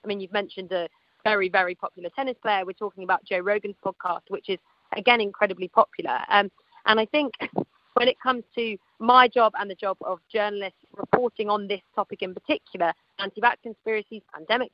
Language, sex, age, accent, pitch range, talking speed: English, female, 40-59, British, 190-225 Hz, 185 wpm